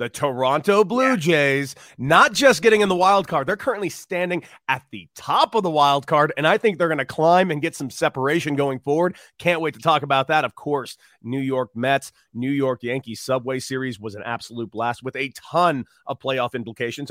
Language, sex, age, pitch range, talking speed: English, male, 30-49, 130-180 Hz, 210 wpm